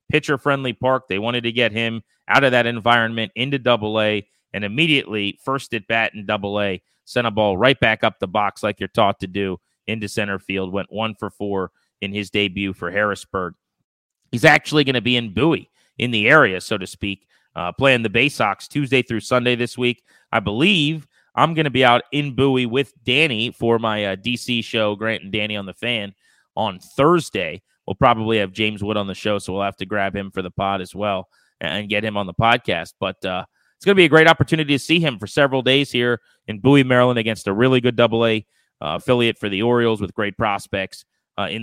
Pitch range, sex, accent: 105-130 Hz, male, American